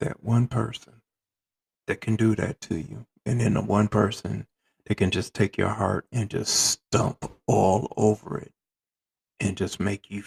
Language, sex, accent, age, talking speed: English, male, American, 50-69, 175 wpm